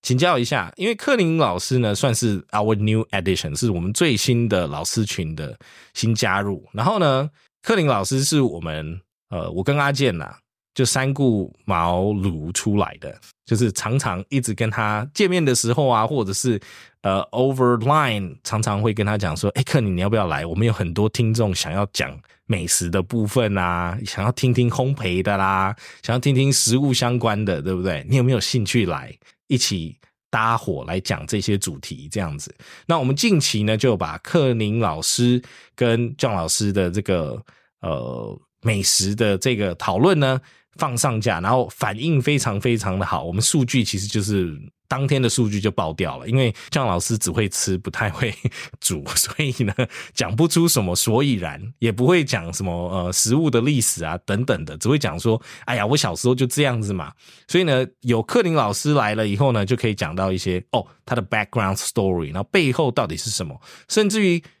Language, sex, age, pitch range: English, male, 20-39, 95-130 Hz